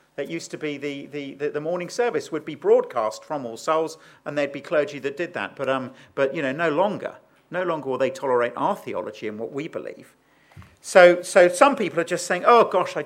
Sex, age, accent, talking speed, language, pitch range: male, 50-69, British, 230 wpm, English, 145-195 Hz